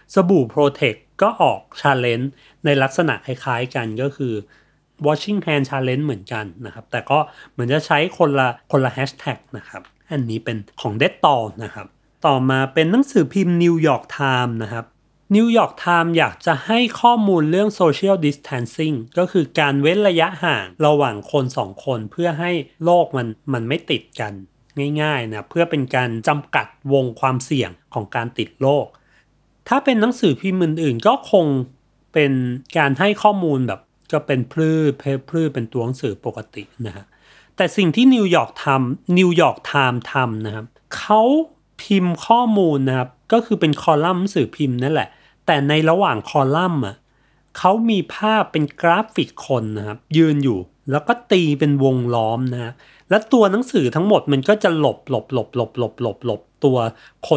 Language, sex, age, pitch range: Thai, male, 30-49, 125-175 Hz